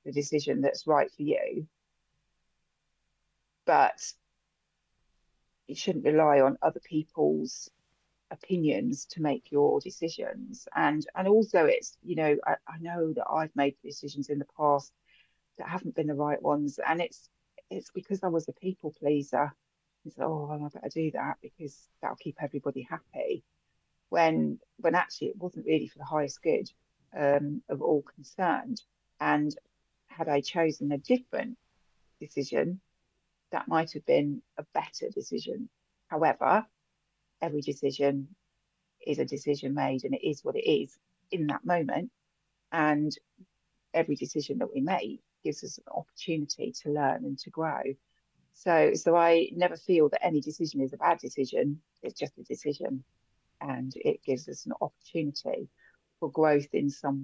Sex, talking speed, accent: female, 155 wpm, British